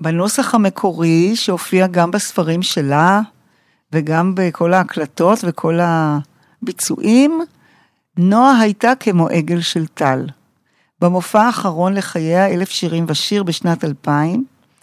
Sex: female